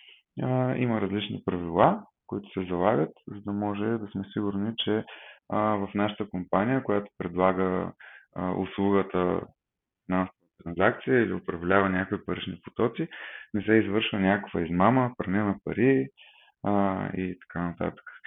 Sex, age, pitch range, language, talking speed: male, 20-39, 95-115 Hz, Bulgarian, 120 wpm